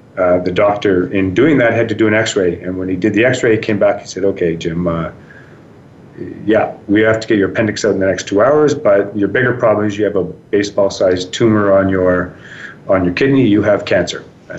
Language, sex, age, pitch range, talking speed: English, male, 40-59, 95-115 Hz, 235 wpm